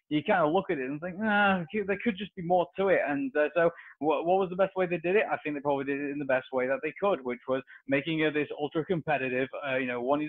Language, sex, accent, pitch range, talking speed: English, male, British, 140-200 Hz, 305 wpm